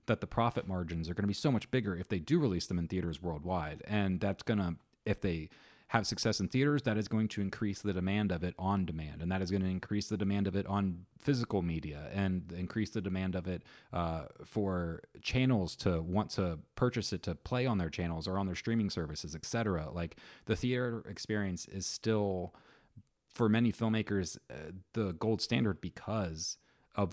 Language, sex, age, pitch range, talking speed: English, male, 30-49, 90-110 Hz, 205 wpm